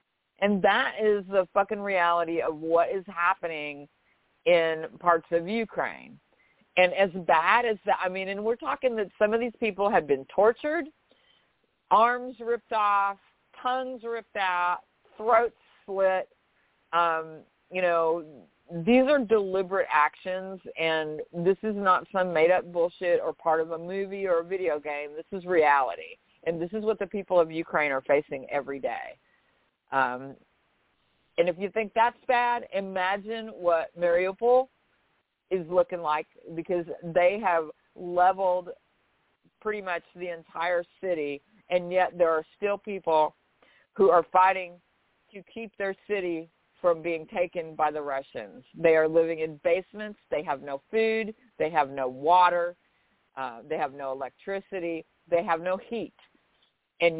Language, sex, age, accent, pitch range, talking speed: English, female, 50-69, American, 165-205 Hz, 150 wpm